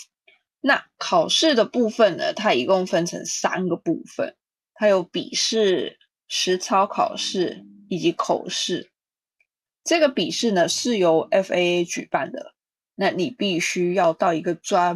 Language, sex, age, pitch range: Chinese, female, 20-39, 175-235 Hz